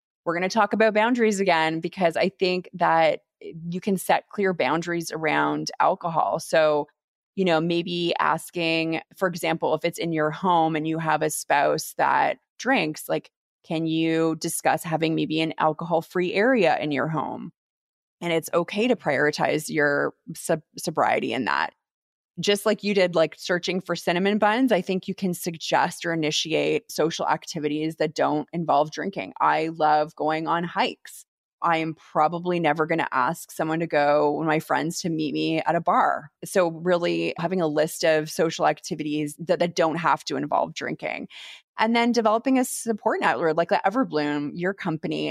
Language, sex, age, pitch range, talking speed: English, female, 20-39, 155-180 Hz, 170 wpm